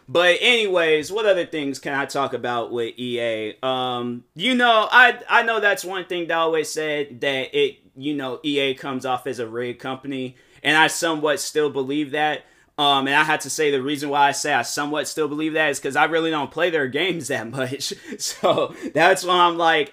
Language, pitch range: English, 140-185 Hz